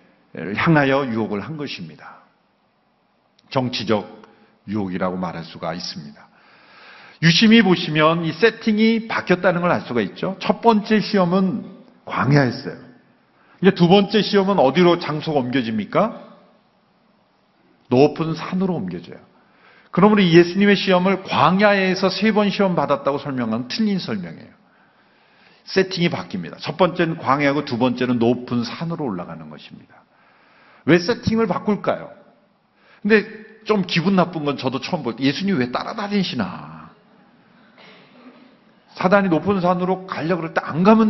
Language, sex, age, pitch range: Korean, male, 50-69, 140-205 Hz